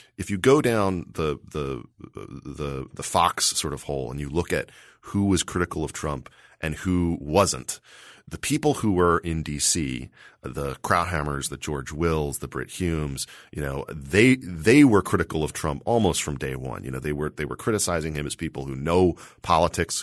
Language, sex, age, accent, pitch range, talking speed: English, male, 40-59, American, 75-95 Hz, 190 wpm